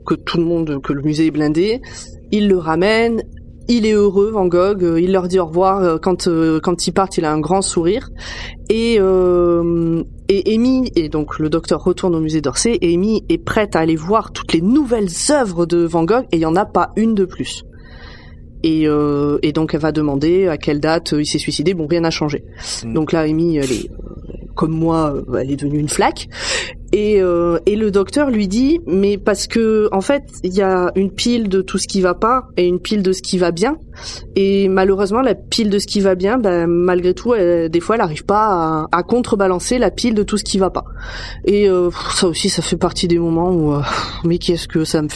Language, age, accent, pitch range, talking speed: French, 20-39, French, 160-200 Hz, 225 wpm